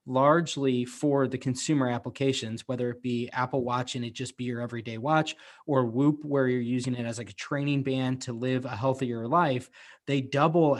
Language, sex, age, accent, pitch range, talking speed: English, male, 20-39, American, 125-145 Hz, 195 wpm